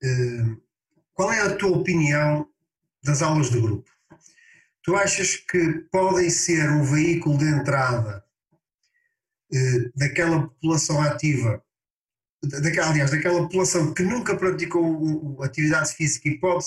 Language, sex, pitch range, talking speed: Portuguese, male, 145-170 Hz, 110 wpm